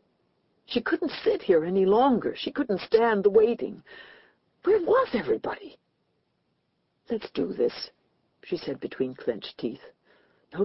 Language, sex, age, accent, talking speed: English, female, 60-79, American, 130 wpm